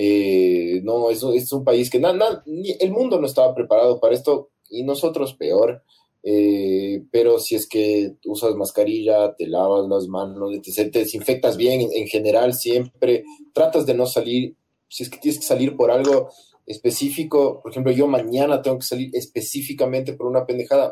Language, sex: Spanish, male